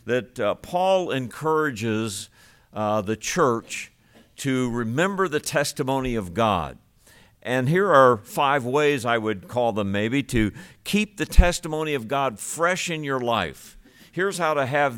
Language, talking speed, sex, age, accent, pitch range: English, 150 wpm, male, 60-79, American, 115-155 Hz